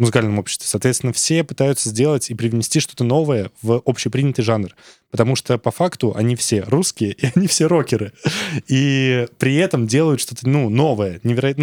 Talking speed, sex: 165 wpm, male